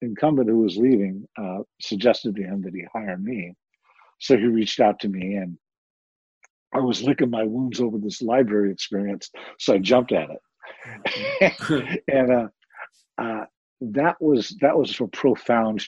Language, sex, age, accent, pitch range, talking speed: English, male, 50-69, American, 100-135 Hz, 160 wpm